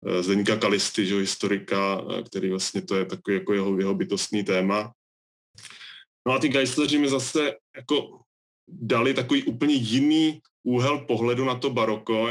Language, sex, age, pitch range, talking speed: Czech, male, 20-39, 100-115 Hz, 140 wpm